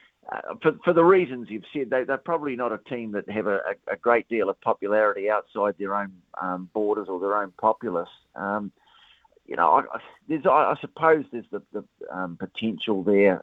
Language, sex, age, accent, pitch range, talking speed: English, male, 50-69, Australian, 100-125 Hz, 200 wpm